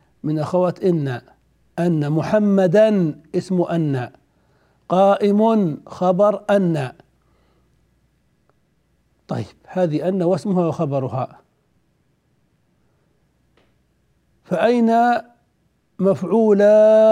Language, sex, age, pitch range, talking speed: Arabic, male, 60-79, 170-210 Hz, 60 wpm